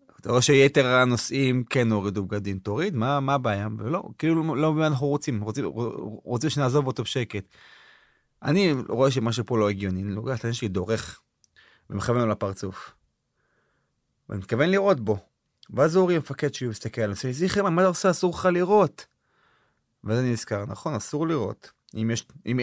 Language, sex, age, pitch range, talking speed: Hebrew, male, 30-49, 110-140 Hz, 165 wpm